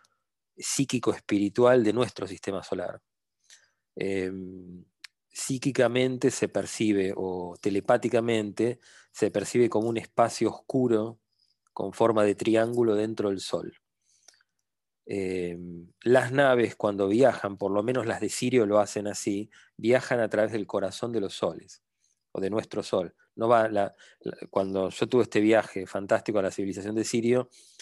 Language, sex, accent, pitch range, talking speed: English, male, Argentinian, 100-120 Hz, 130 wpm